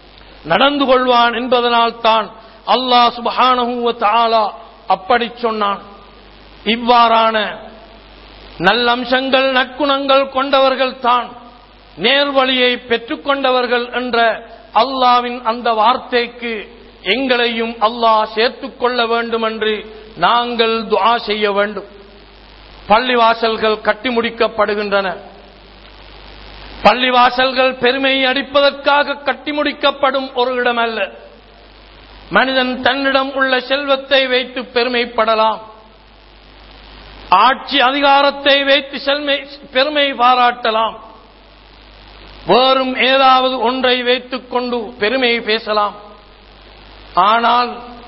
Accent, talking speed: native, 70 wpm